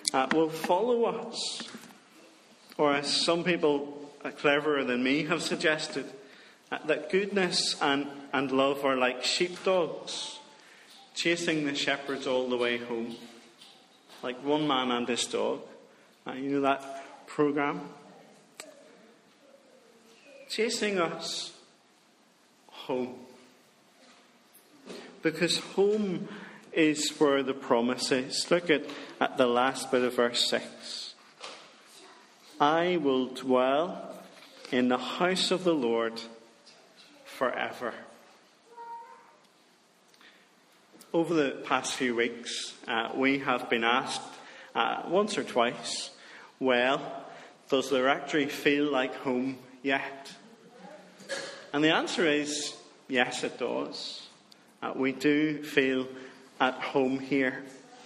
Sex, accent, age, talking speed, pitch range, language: male, British, 40-59, 110 wpm, 130-170 Hz, English